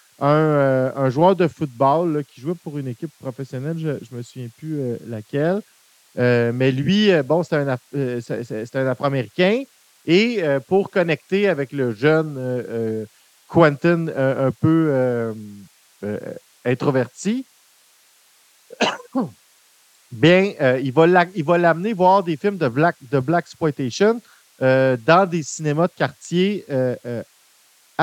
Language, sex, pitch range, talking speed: French, male, 130-175 Hz, 135 wpm